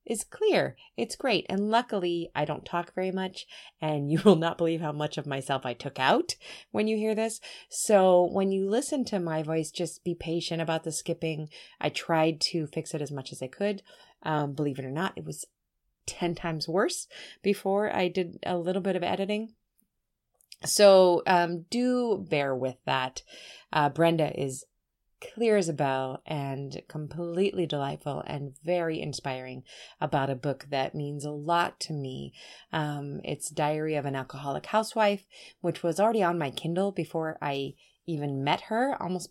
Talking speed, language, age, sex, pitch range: 175 wpm, English, 30-49, female, 150-195 Hz